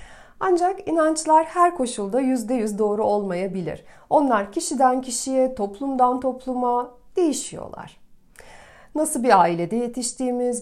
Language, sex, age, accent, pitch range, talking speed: Turkish, female, 40-59, native, 215-260 Hz, 100 wpm